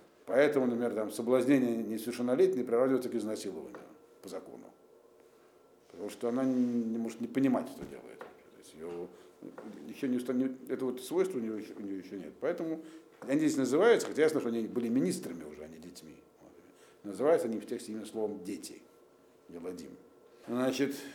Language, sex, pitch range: Russian, male, 115-180 Hz